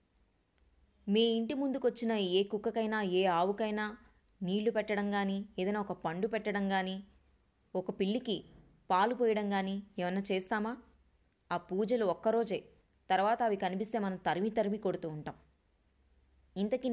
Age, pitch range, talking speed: 20-39, 150-205 Hz, 125 wpm